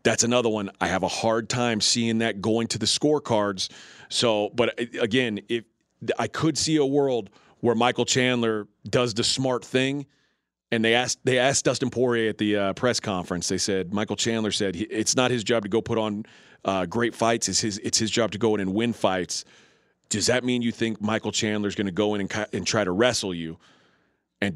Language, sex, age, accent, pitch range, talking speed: English, male, 40-59, American, 105-130 Hz, 215 wpm